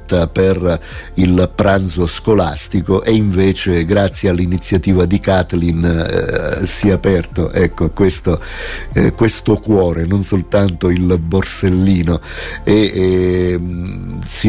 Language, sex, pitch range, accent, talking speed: Italian, male, 90-105 Hz, native, 110 wpm